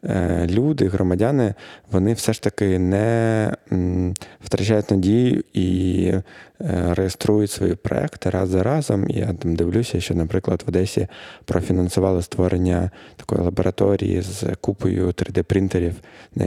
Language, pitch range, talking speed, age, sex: Ukrainian, 90-105 Hz, 115 wpm, 20-39, male